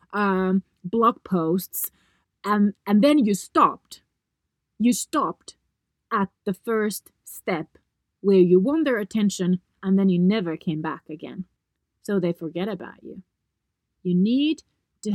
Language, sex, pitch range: English, female, 175-235 Hz